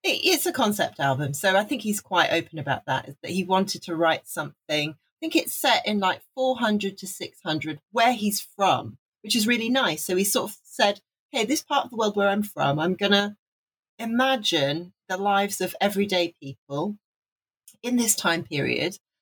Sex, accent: female, British